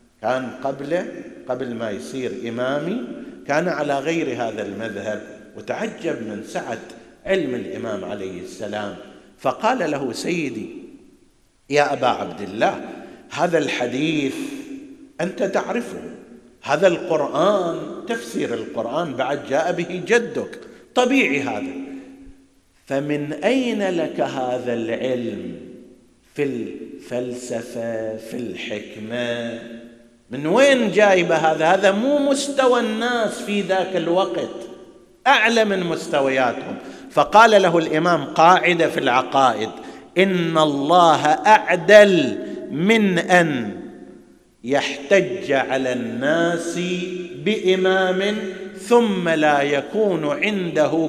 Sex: male